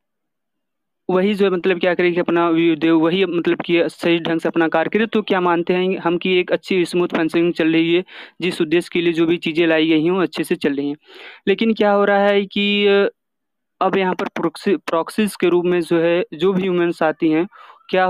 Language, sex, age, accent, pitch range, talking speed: Hindi, male, 30-49, native, 165-190 Hz, 230 wpm